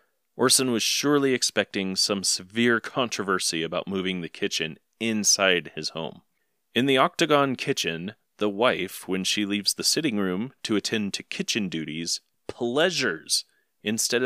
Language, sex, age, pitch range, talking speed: English, male, 30-49, 95-125 Hz, 140 wpm